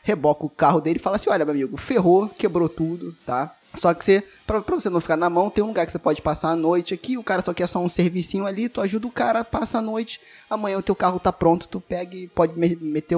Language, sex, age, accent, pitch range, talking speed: Portuguese, male, 20-39, Brazilian, 165-225 Hz, 275 wpm